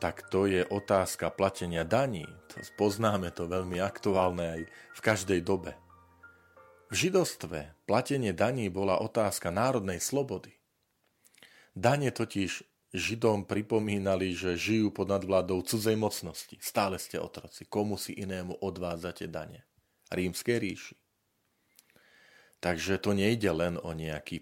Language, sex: Slovak, male